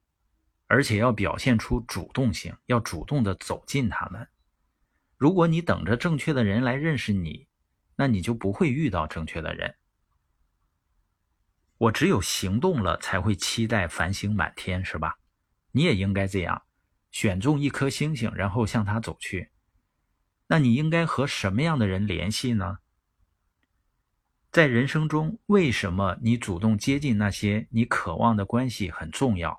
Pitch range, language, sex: 90-130 Hz, Chinese, male